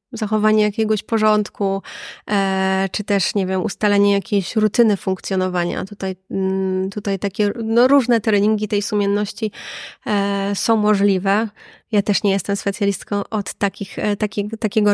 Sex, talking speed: female, 110 wpm